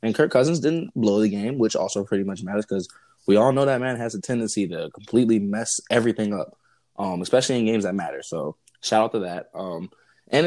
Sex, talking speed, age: male, 225 wpm, 20-39